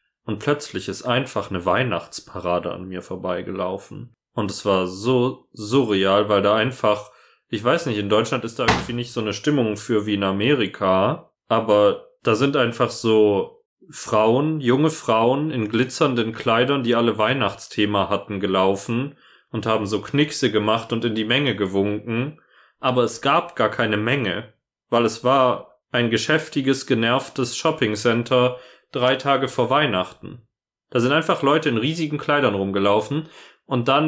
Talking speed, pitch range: 155 wpm, 105-130 Hz